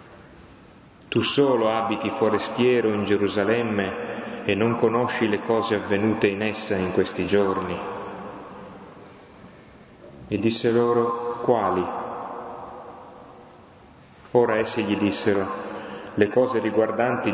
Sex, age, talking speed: male, 30-49, 95 wpm